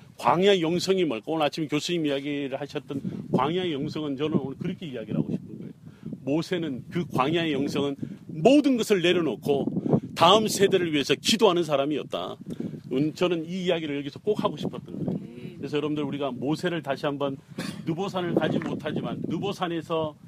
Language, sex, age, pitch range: Korean, male, 40-59, 150-185 Hz